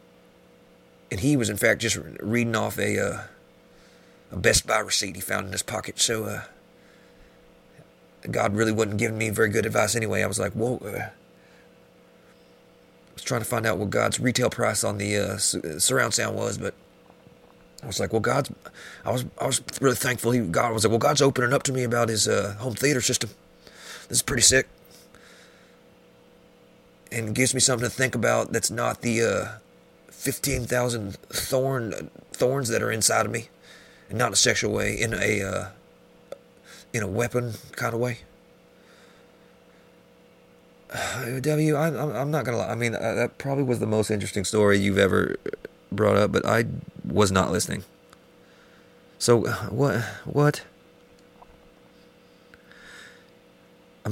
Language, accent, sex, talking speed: English, American, male, 160 wpm